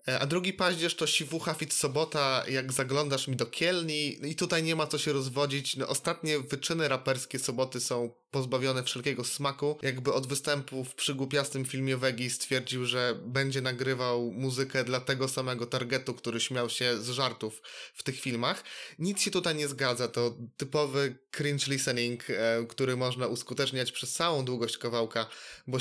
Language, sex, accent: Polish, male, native